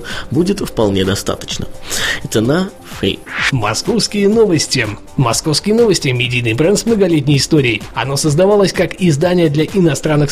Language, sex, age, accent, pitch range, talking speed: Russian, male, 20-39, native, 135-180 Hz, 110 wpm